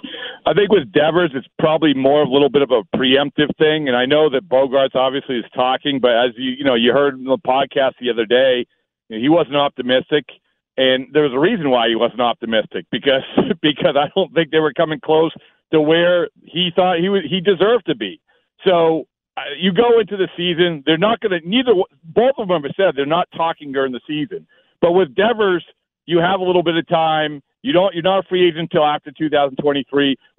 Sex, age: male, 50-69